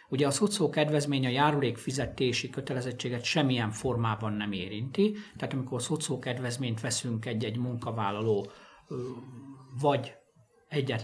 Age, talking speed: 60-79, 110 wpm